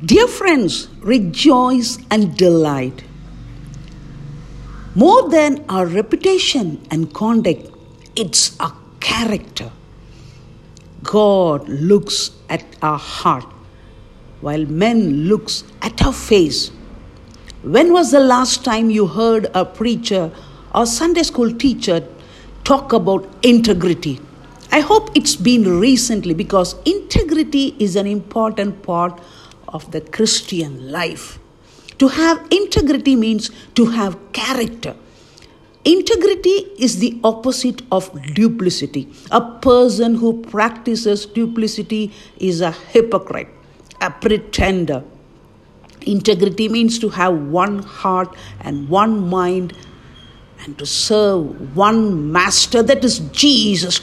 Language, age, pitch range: English, 50-69, 165-240 Hz